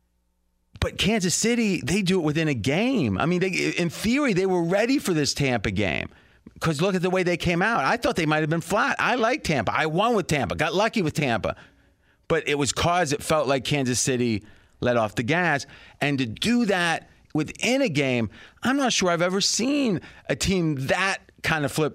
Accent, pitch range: American, 125-175 Hz